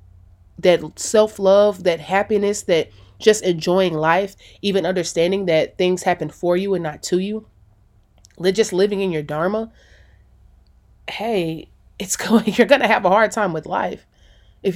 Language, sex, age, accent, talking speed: English, female, 20-39, American, 150 wpm